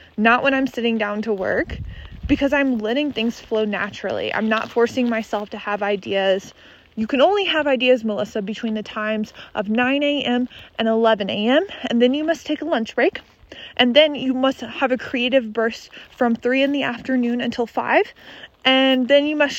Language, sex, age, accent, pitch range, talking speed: English, female, 20-39, American, 215-260 Hz, 190 wpm